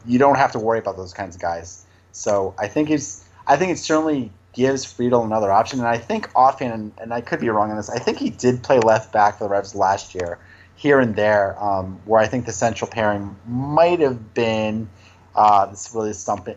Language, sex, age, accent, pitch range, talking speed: English, male, 30-49, American, 95-120 Hz, 230 wpm